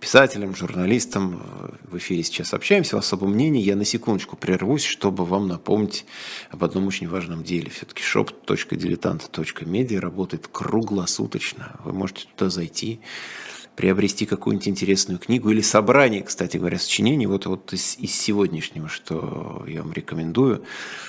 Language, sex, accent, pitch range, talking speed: Russian, male, native, 90-110 Hz, 135 wpm